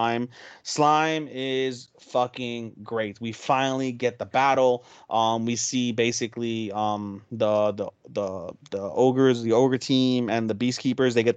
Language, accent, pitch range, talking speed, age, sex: English, American, 110-130 Hz, 155 wpm, 30-49, male